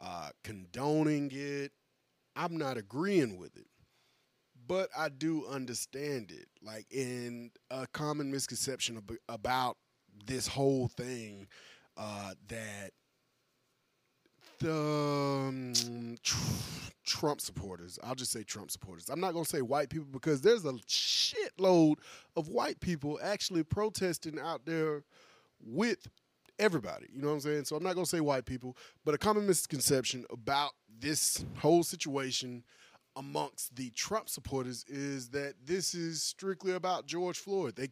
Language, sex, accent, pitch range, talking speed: English, male, American, 125-165 Hz, 140 wpm